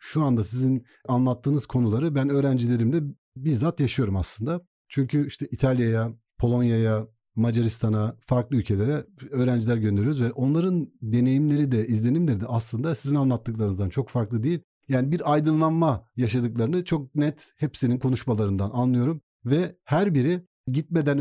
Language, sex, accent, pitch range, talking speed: Turkish, male, native, 115-150 Hz, 125 wpm